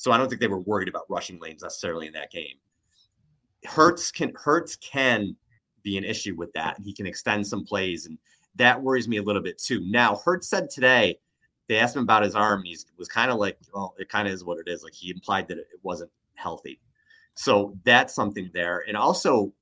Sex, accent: male, American